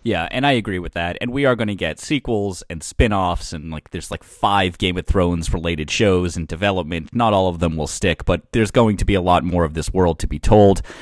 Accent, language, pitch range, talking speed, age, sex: American, English, 90-115 Hz, 245 wpm, 30-49, male